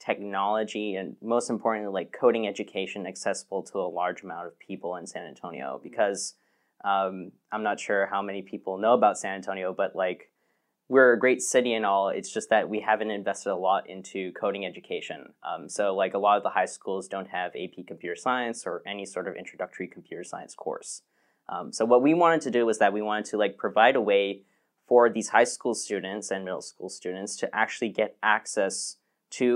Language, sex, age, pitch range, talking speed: English, male, 10-29, 95-110 Hz, 205 wpm